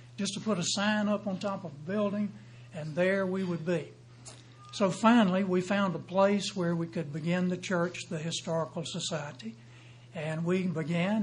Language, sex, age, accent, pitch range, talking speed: English, male, 60-79, American, 160-205 Hz, 180 wpm